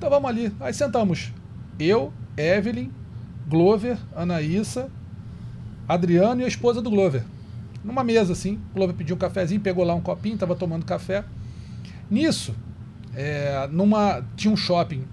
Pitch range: 130-205 Hz